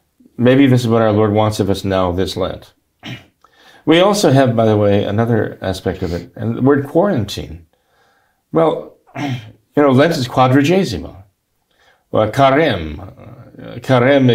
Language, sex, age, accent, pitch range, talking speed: English, male, 50-69, American, 100-135 Hz, 145 wpm